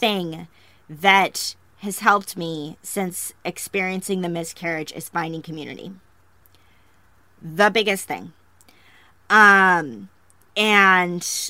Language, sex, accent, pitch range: English, female, American, 160-205 Hz